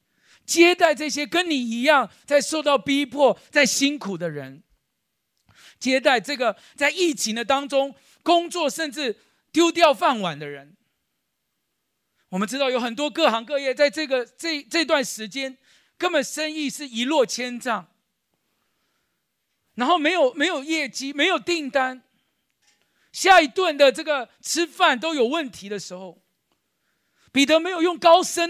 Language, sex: Chinese, male